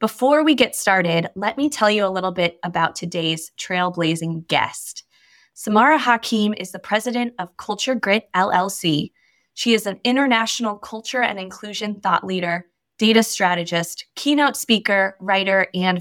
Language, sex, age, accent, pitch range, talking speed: English, female, 20-39, American, 180-230 Hz, 145 wpm